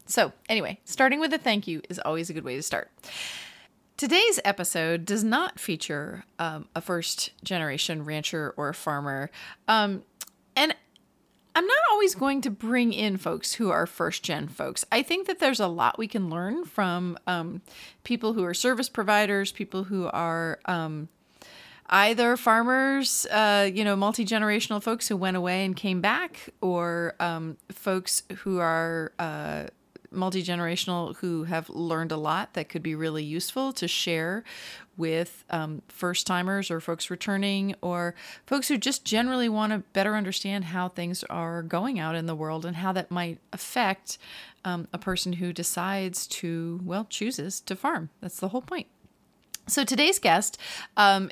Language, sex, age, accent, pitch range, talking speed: English, female, 30-49, American, 170-215 Hz, 160 wpm